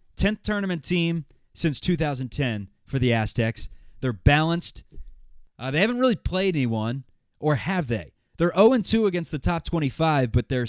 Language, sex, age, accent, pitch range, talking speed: English, male, 20-39, American, 125-175 Hz, 150 wpm